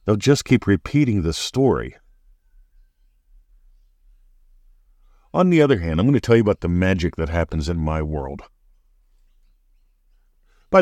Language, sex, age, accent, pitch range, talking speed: English, male, 50-69, American, 80-110 Hz, 135 wpm